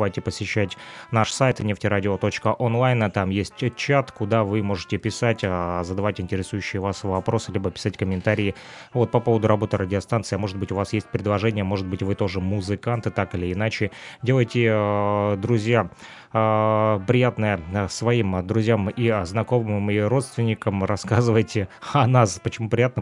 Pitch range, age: 100-115 Hz, 20-39